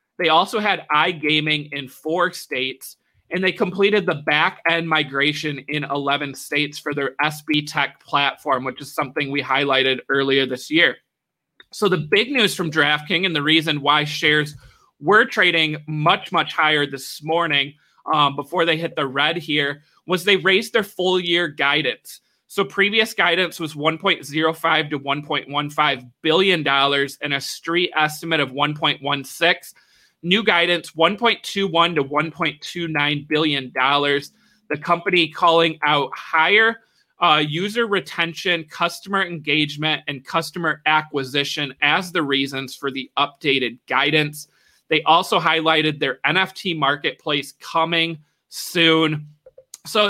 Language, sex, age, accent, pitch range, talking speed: English, male, 30-49, American, 145-175 Hz, 135 wpm